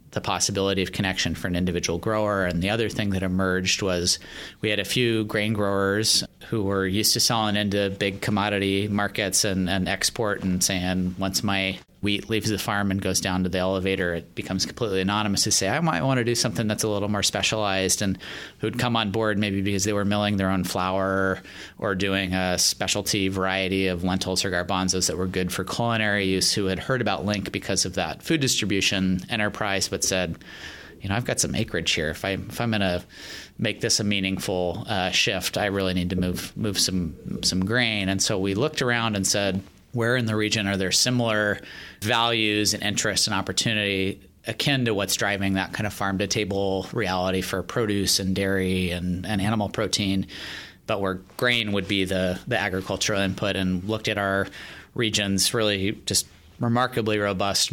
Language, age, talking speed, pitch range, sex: English, 30-49, 195 wpm, 95-110 Hz, male